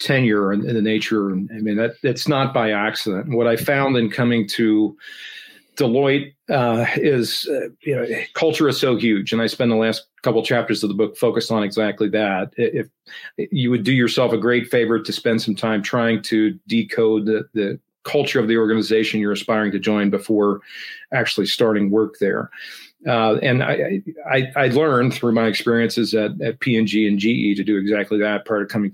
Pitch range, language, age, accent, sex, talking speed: 105-130 Hz, English, 40-59, American, male, 195 wpm